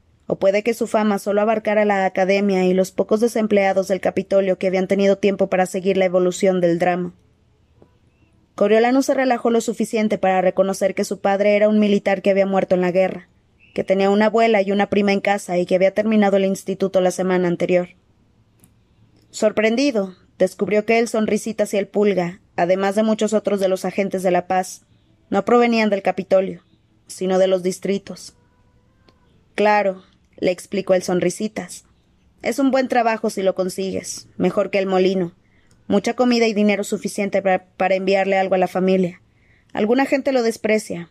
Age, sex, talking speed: 20-39, female, 175 wpm